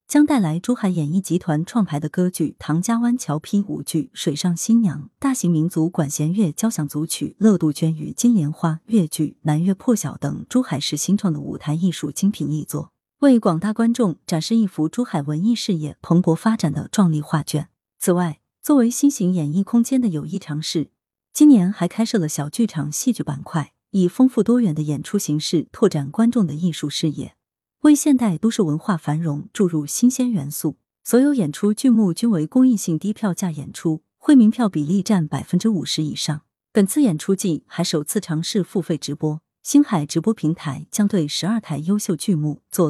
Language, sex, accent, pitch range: Chinese, female, native, 155-220 Hz